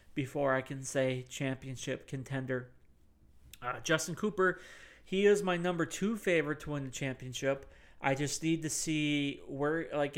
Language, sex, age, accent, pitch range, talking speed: English, male, 40-59, American, 130-160 Hz, 155 wpm